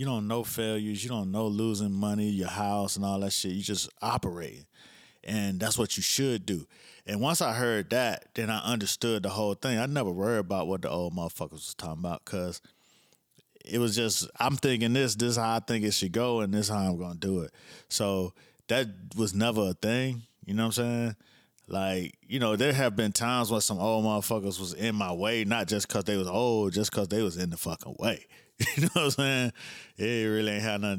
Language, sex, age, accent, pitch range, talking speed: English, male, 30-49, American, 100-120 Hz, 230 wpm